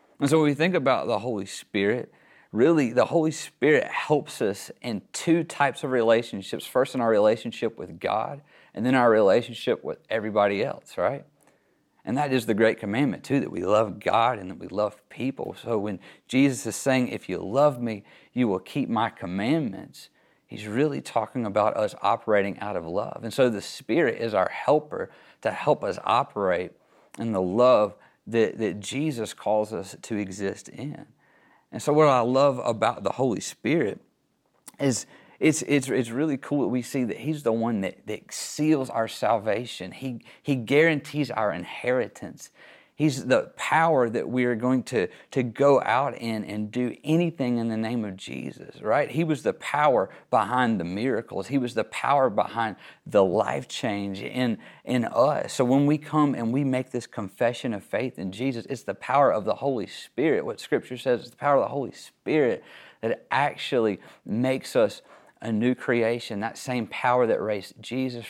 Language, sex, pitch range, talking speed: English, male, 110-140 Hz, 185 wpm